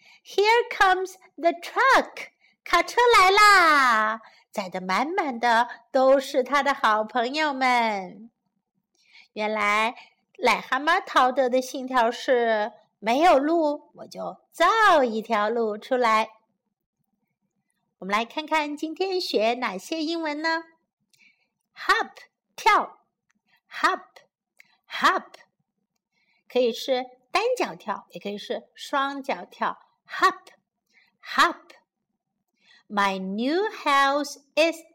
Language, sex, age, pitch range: Chinese, female, 50-69, 215-330 Hz